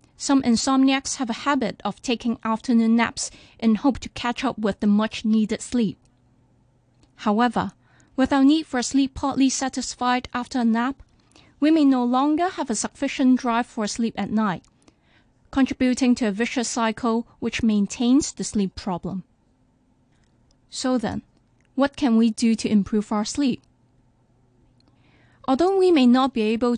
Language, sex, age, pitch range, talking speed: English, female, 20-39, 210-260 Hz, 150 wpm